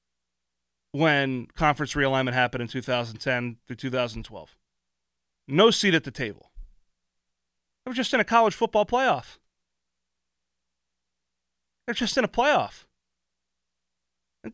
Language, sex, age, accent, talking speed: English, male, 30-49, American, 115 wpm